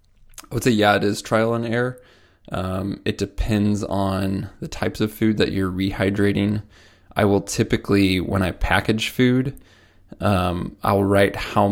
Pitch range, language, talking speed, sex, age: 95-110 Hz, English, 160 wpm, male, 20-39